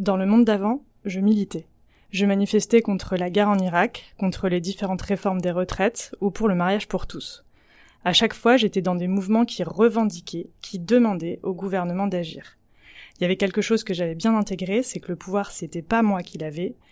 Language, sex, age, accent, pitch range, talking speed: French, female, 20-39, French, 185-215 Hz, 200 wpm